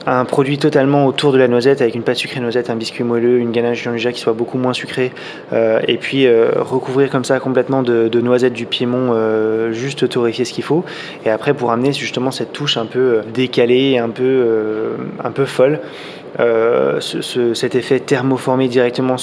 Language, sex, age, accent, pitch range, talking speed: French, male, 20-39, French, 115-135 Hz, 205 wpm